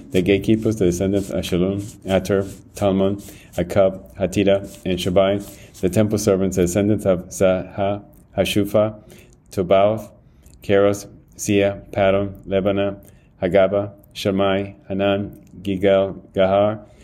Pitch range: 95-100 Hz